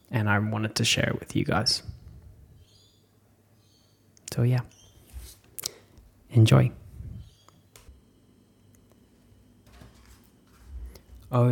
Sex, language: male, English